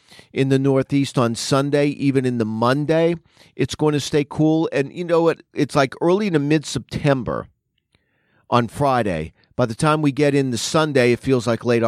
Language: English